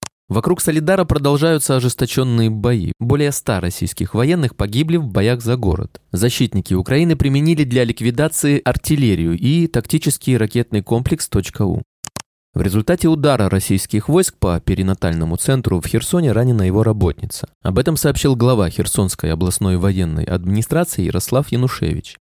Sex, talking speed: male, 130 wpm